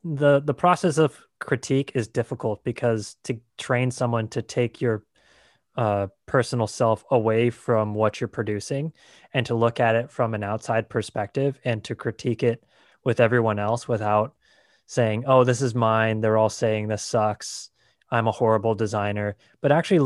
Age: 20-39